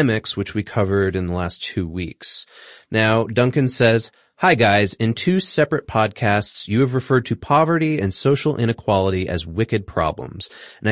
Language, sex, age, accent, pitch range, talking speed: English, male, 30-49, American, 100-140 Hz, 160 wpm